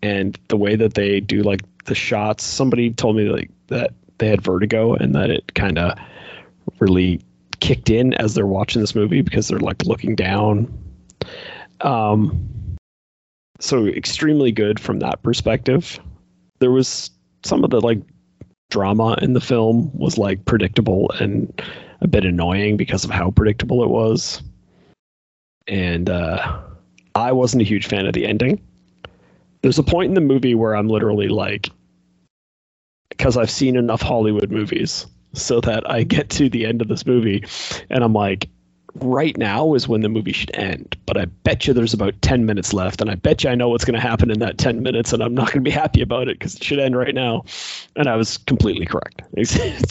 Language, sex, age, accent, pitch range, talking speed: English, male, 30-49, American, 95-120 Hz, 190 wpm